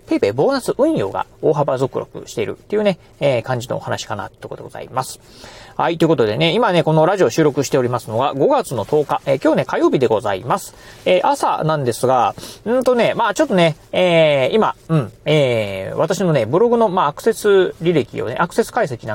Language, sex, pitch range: Japanese, male, 135-220 Hz